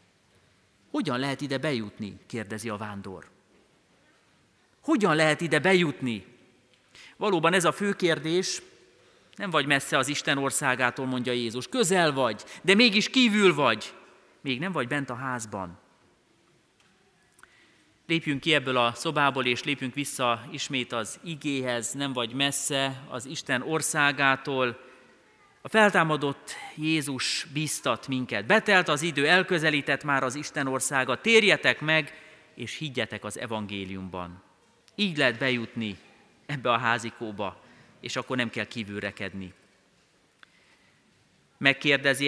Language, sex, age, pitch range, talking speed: Hungarian, male, 30-49, 120-155 Hz, 120 wpm